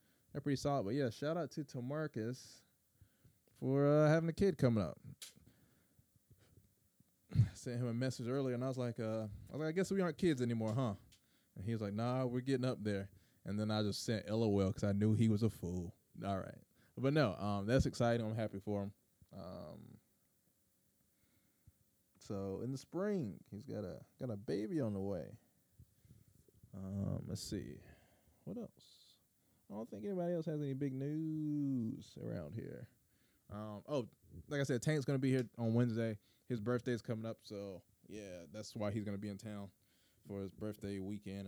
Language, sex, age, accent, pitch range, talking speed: English, male, 20-39, American, 100-135 Hz, 185 wpm